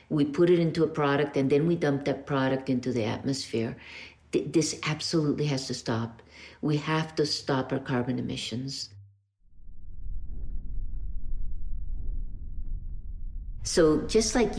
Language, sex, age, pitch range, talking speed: English, female, 50-69, 120-165 Hz, 125 wpm